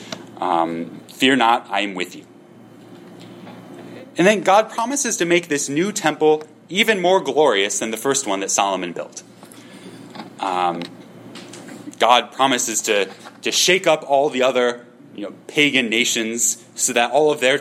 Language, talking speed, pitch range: English, 155 wpm, 105-150 Hz